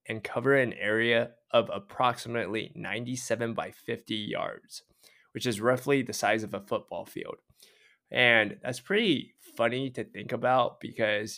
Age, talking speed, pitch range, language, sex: 20-39, 140 wpm, 110-125 Hz, English, male